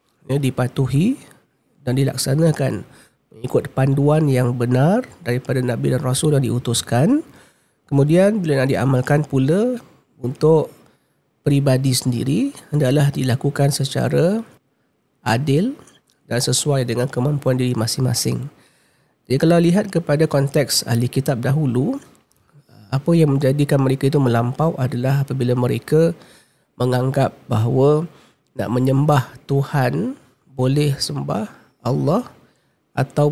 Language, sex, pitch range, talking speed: Malay, male, 130-150 Hz, 105 wpm